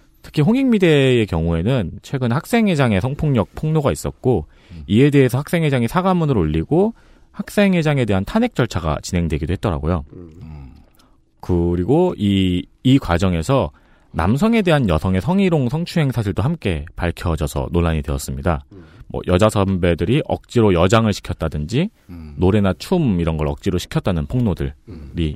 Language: Korean